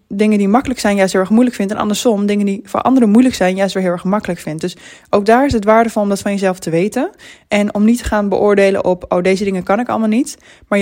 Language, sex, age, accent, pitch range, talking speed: Dutch, female, 20-39, Dutch, 185-215 Hz, 285 wpm